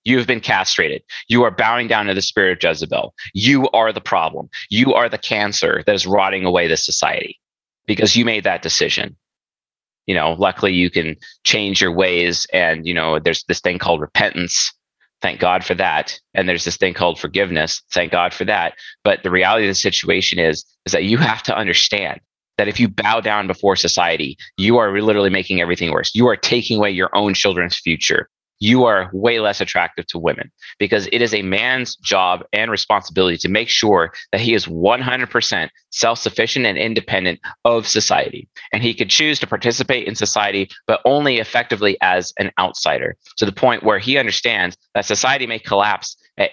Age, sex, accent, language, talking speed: 30-49, male, American, English, 190 wpm